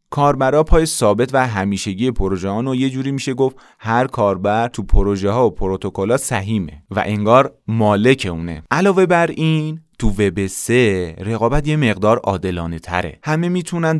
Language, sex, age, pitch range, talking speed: Persian, male, 30-49, 95-125 Hz, 145 wpm